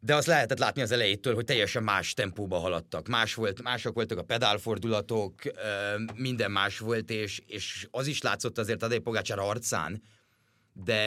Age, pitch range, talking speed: 30-49, 100-120 Hz, 165 wpm